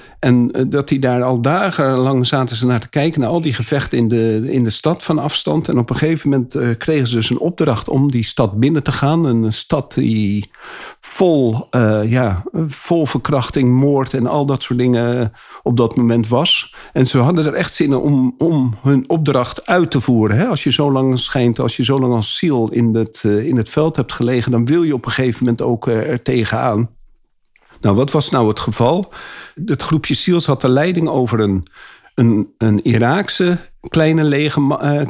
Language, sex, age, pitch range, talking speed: Dutch, male, 50-69, 120-155 Hz, 200 wpm